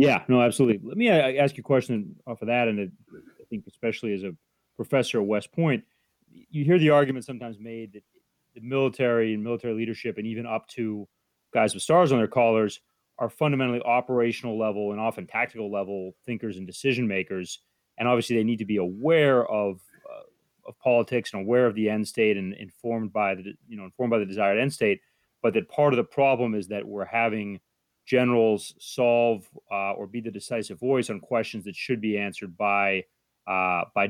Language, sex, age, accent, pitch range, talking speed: English, male, 30-49, American, 100-120 Hz, 195 wpm